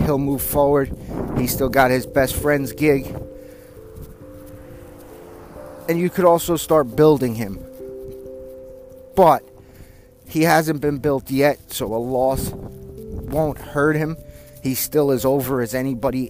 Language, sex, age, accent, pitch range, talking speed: English, male, 30-49, American, 115-150 Hz, 130 wpm